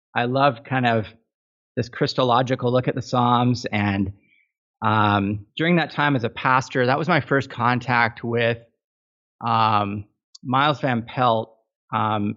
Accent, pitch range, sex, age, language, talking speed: American, 110-130 Hz, male, 30-49, English, 140 wpm